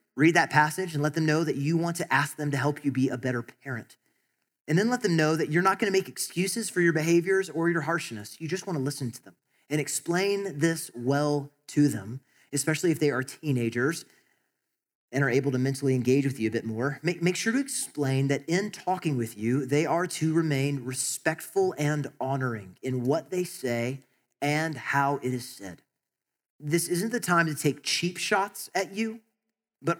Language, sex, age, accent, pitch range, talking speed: English, male, 30-49, American, 140-180 Hz, 200 wpm